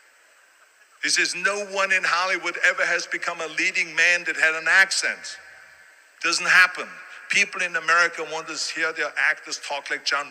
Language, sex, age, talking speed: English, male, 50-69, 170 wpm